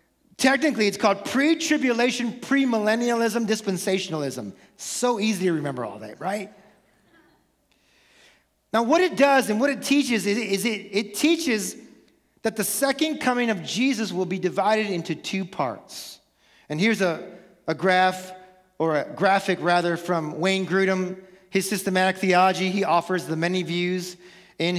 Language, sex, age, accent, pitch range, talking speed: English, male, 40-59, American, 180-250 Hz, 140 wpm